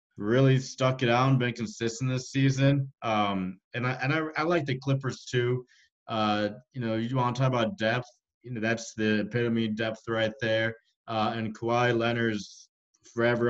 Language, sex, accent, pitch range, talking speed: English, male, American, 115-135 Hz, 180 wpm